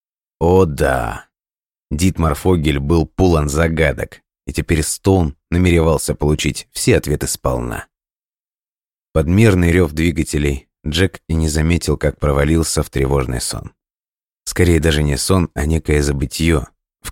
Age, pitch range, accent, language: 30-49, 75-85 Hz, native, Russian